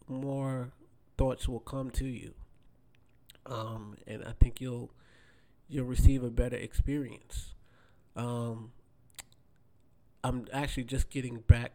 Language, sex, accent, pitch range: English, male, American, 115-130 Hz